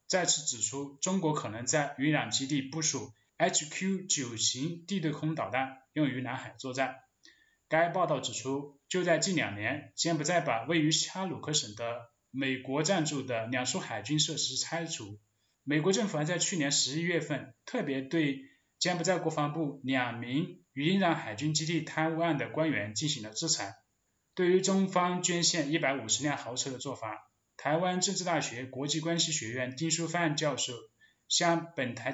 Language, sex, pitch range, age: Chinese, male, 130-170 Hz, 20-39